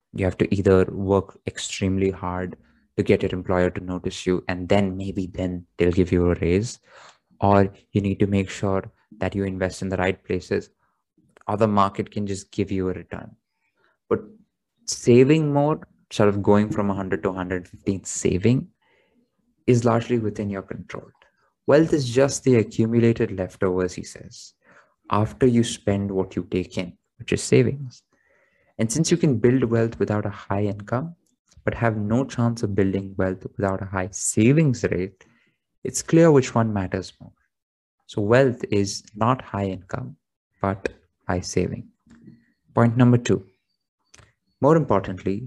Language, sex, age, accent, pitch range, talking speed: English, male, 20-39, Indian, 95-115 Hz, 160 wpm